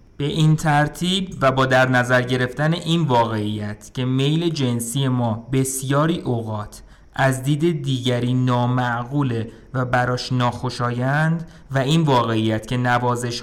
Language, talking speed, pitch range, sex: Persian, 125 wpm, 120-150 Hz, male